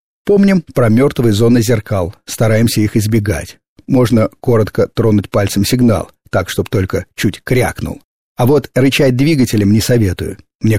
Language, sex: Russian, male